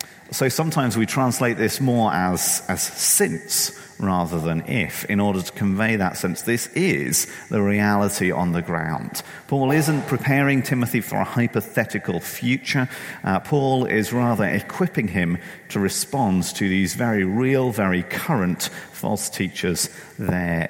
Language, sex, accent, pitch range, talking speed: English, male, British, 90-130 Hz, 145 wpm